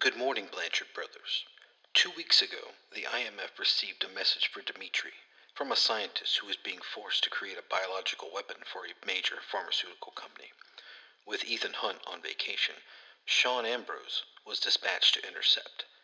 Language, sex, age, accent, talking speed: English, male, 50-69, American, 155 wpm